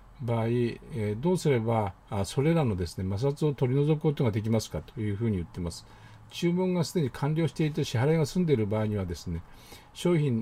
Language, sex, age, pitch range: Japanese, male, 60-79, 105-165 Hz